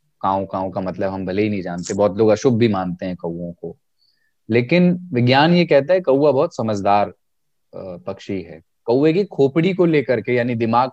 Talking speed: 190 wpm